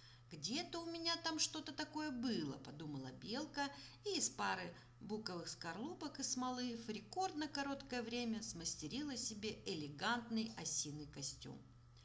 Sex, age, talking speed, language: female, 50-69, 130 wpm, Russian